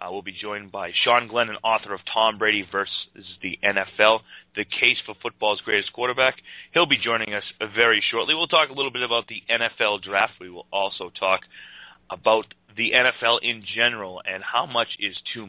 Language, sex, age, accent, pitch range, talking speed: English, male, 30-49, American, 105-125 Hz, 195 wpm